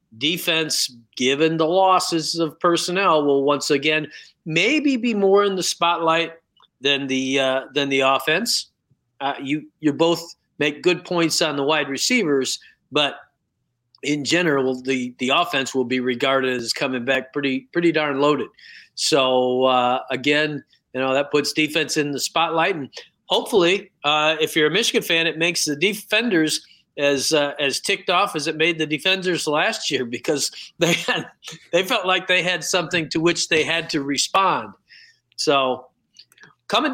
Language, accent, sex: English, American, male